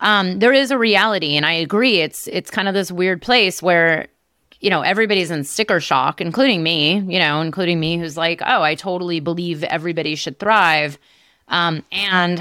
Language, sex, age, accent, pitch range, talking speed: English, female, 30-49, American, 160-195 Hz, 190 wpm